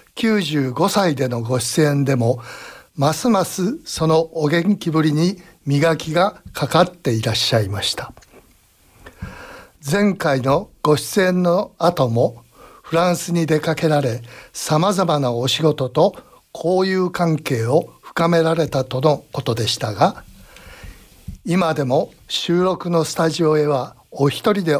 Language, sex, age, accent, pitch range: Japanese, male, 60-79, native, 130-175 Hz